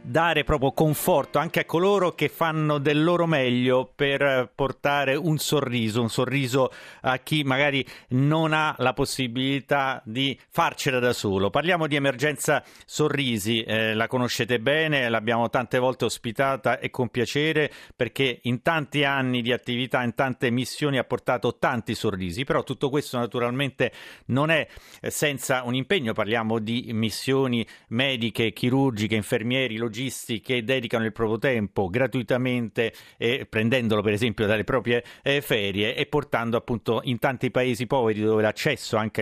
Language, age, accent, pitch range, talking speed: Italian, 40-59, native, 115-140 Hz, 145 wpm